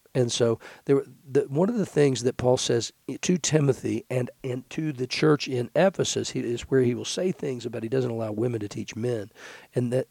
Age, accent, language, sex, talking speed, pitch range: 50-69, American, English, male, 220 wpm, 115-140 Hz